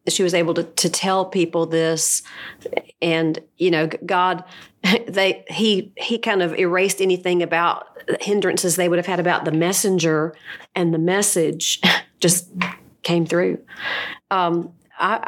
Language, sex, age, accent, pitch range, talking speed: English, female, 40-59, American, 165-185 Hz, 140 wpm